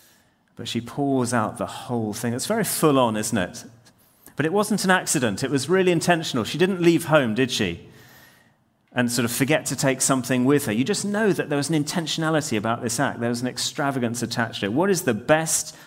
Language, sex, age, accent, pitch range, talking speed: English, male, 30-49, British, 105-140 Hz, 225 wpm